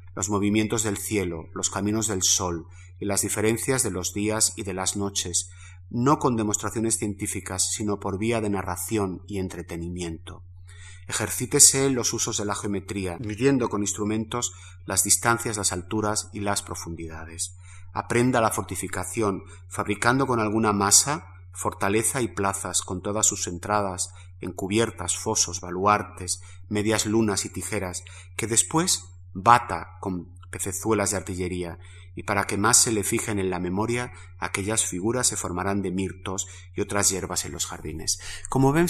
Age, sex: 30-49, male